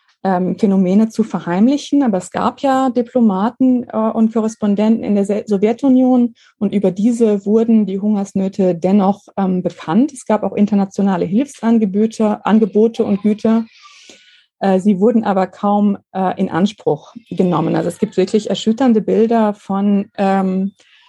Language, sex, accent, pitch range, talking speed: German, female, German, 185-225 Hz, 120 wpm